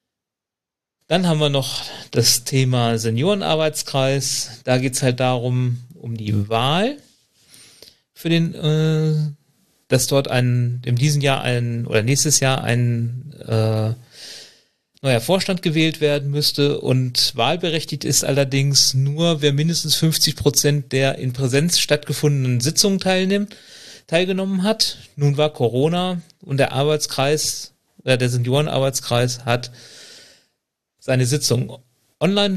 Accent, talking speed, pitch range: German, 120 wpm, 120-150 Hz